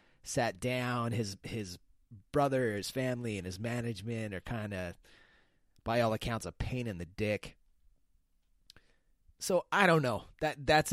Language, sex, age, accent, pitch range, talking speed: English, male, 30-49, American, 100-130 Hz, 150 wpm